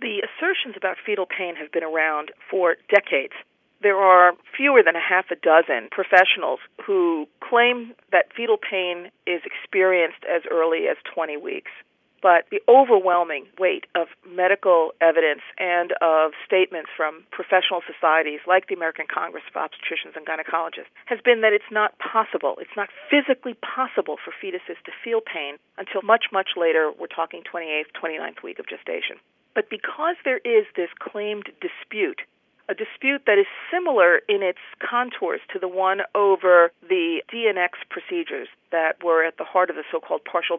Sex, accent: female, American